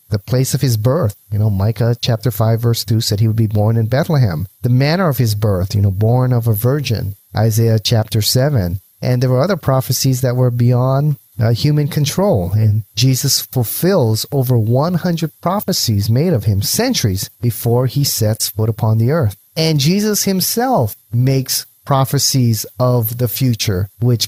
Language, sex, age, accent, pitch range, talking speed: English, male, 30-49, American, 110-140 Hz, 175 wpm